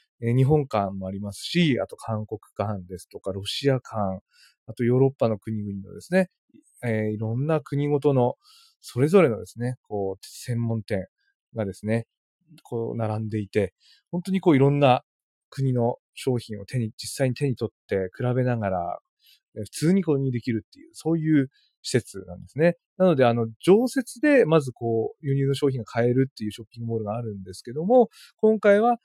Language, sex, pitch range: Japanese, male, 110-155 Hz